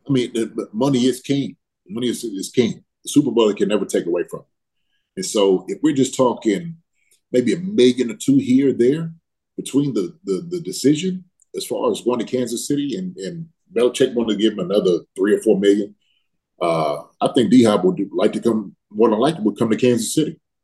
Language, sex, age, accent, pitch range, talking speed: English, male, 30-49, American, 110-165 Hz, 210 wpm